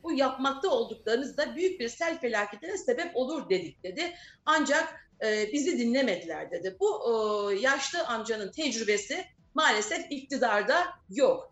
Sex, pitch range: female, 240-350 Hz